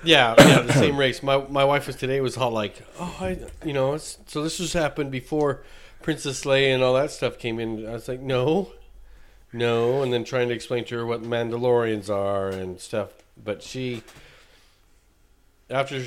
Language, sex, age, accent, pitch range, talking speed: English, male, 40-59, American, 95-125 Hz, 190 wpm